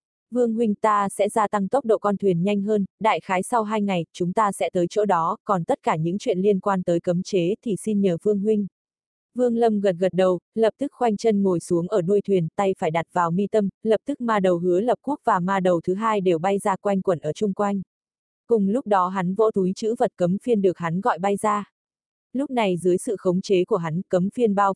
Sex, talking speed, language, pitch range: female, 250 wpm, Vietnamese, 180-220 Hz